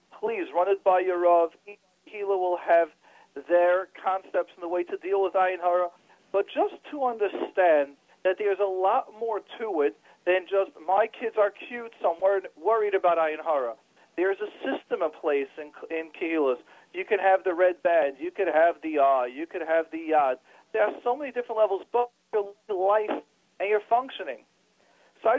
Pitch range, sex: 170-240 Hz, male